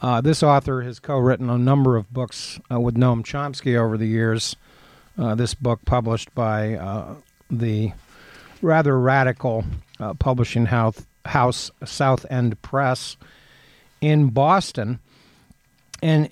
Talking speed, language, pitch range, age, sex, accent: 130 wpm, English, 120-140 Hz, 50-69, male, American